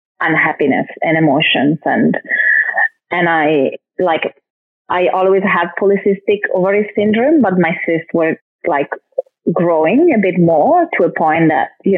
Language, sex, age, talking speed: English, female, 20-39, 135 wpm